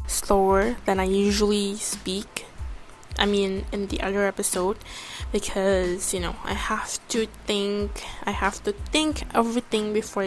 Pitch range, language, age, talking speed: 195-230 Hz, Indonesian, 10-29, 140 wpm